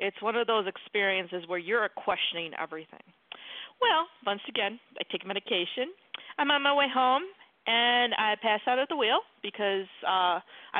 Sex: female